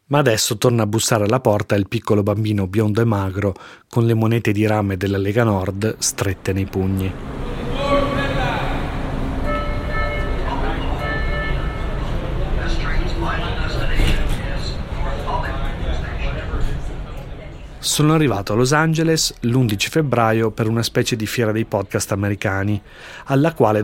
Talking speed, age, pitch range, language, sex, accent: 105 wpm, 30-49, 100-125 Hz, Italian, male, native